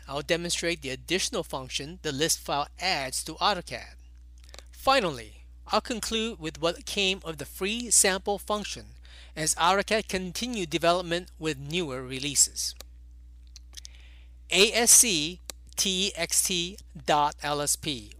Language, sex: English, male